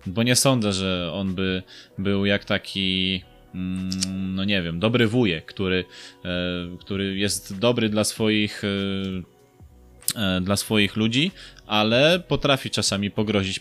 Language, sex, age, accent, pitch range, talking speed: Polish, male, 20-39, native, 95-115 Hz, 120 wpm